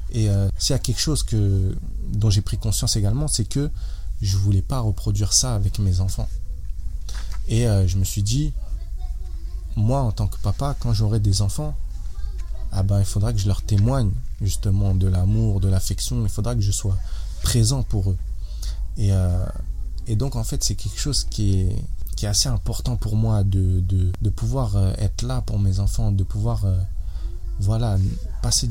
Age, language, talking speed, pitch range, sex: 20-39, French, 190 wpm, 95-115 Hz, male